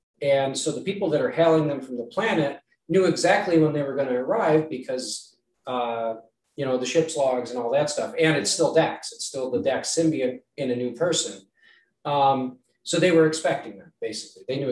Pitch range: 125-160 Hz